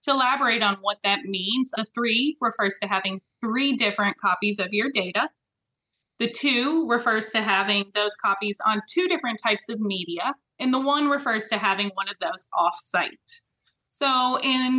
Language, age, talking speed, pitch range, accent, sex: English, 20-39, 170 wpm, 195-240 Hz, American, female